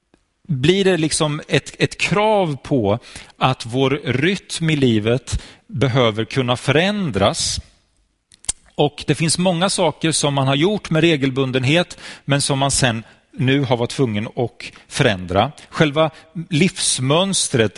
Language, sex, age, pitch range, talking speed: Swedish, male, 40-59, 125-160 Hz, 130 wpm